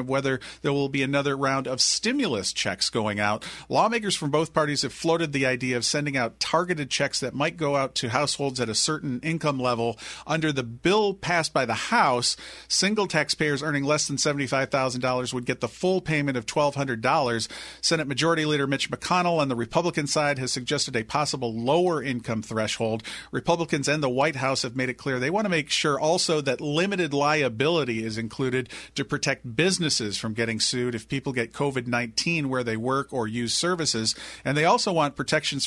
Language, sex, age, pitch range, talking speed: English, male, 40-59, 130-155 Hz, 190 wpm